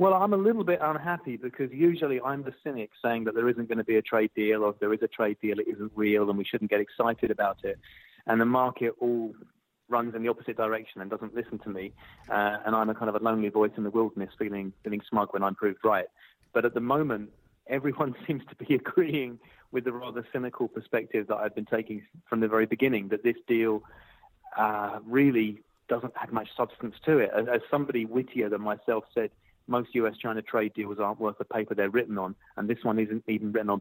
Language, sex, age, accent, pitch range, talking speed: English, male, 30-49, British, 105-125 Hz, 230 wpm